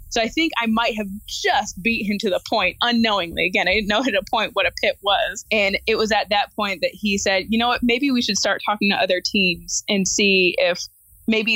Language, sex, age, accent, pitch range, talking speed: English, female, 20-39, American, 185-220 Hz, 250 wpm